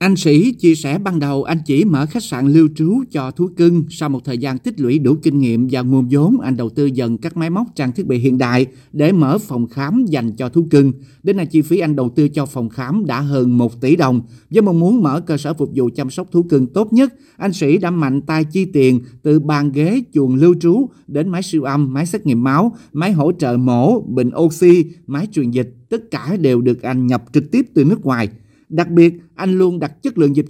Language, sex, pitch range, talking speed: Vietnamese, male, 130-170 Hz, 250 wpm